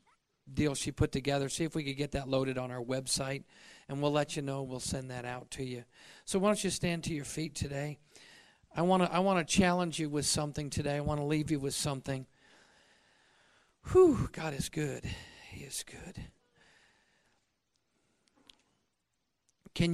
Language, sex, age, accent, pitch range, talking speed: English, male, 40-59, American, 130-155 Hz, 180 wpm